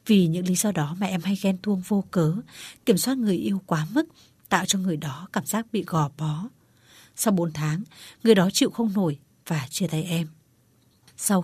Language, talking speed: Vietnamese, 210 wpm